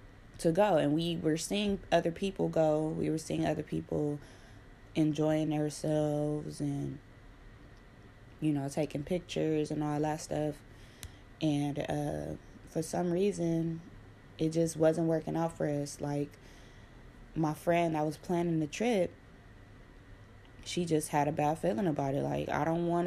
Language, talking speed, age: English, 150 wpm, 20-39